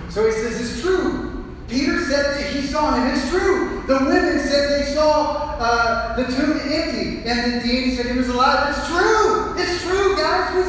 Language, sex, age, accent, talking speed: English, male, 30-49, American, 195 wpm